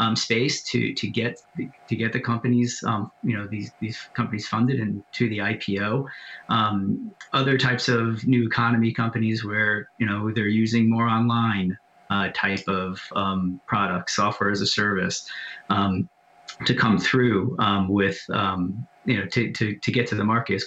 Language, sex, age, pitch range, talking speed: English, male, 30-49, 110-125 Hz, 175 wpm